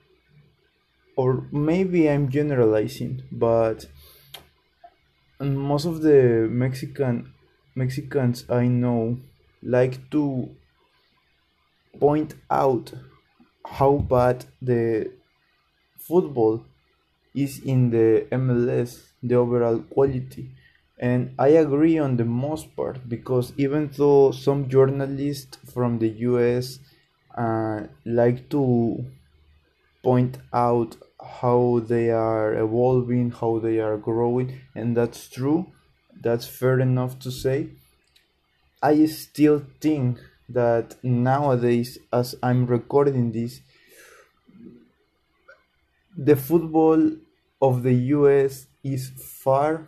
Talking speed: 95 wpm